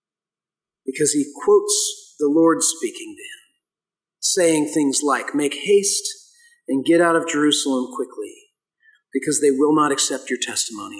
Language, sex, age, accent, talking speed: English, male, 40-59, American, 135 wpm